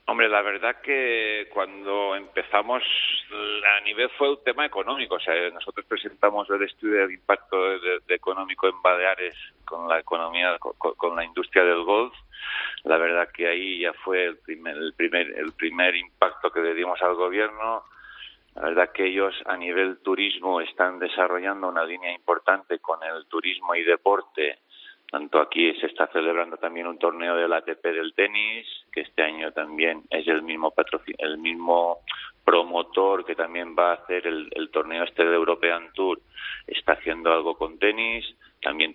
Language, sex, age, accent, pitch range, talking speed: Spanish, male, 40-59, Spanish, 85-105 Hz, 170 wpm